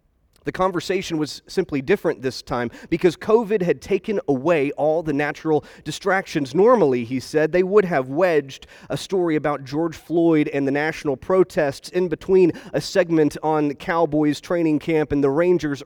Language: English